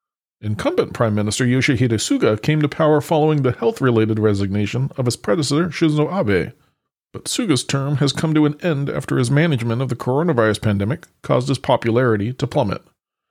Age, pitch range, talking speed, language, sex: 40-59, 110-150 Hz, 165 wpm, English, male